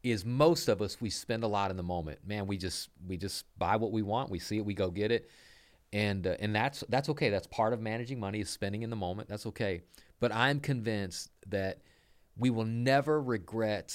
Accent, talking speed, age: American, 230 wpm, 40-59